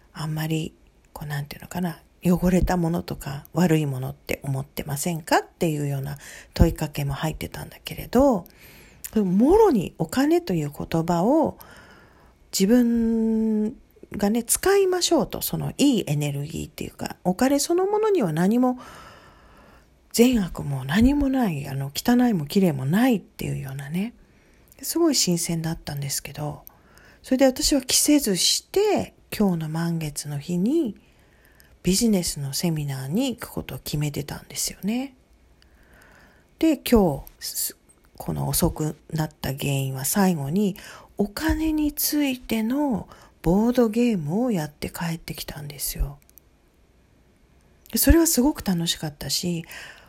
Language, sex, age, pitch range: Japanese, female, 40-59, 150-245 Hz